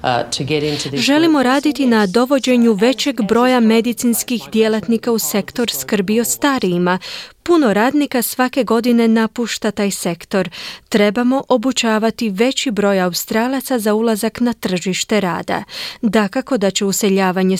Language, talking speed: Croatian, 115 wpm